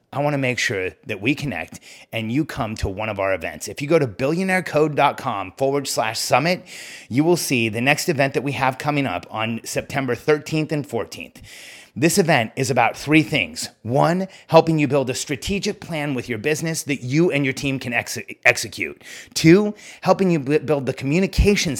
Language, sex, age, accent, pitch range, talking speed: English, male, 30-49, American, 120-155 Hz, 185 wpm